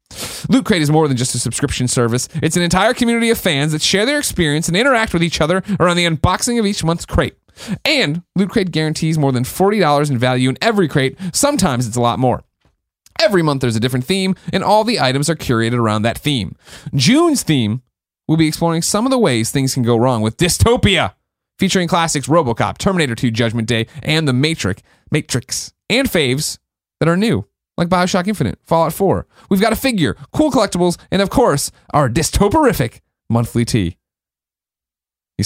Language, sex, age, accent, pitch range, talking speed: English, male, 30-49, American, 130-195 Hz, 190 wpm